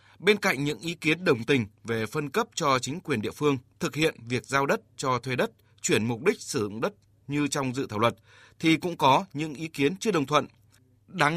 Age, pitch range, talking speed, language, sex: 20-39, 120-160 Hz, 230 wpm, Vietnamese, male